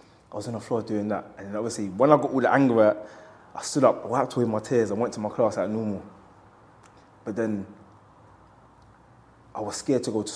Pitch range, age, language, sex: 100-120 Hz, 20-39, English, male